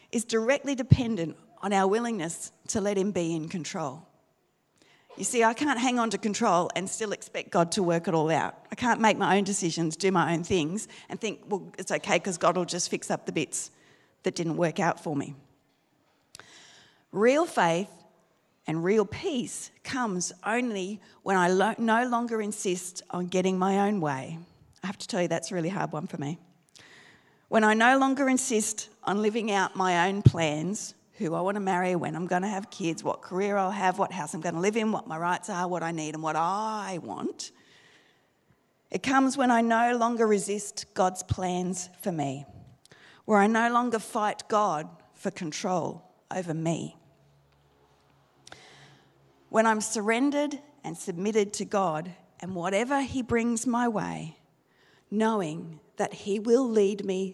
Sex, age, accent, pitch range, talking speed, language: female, 40-59, Australian, 170-220 Hz, 180 wpm, English